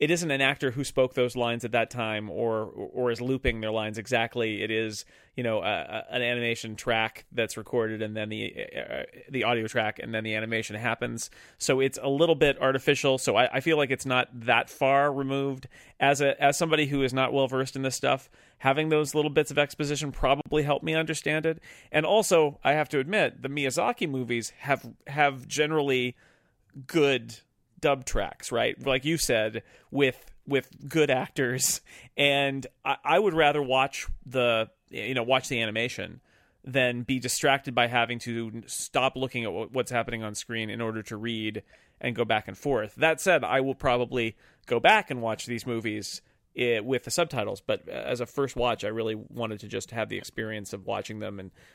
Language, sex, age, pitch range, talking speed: English, male, 30-49, 115-140 Hz, 195 wpm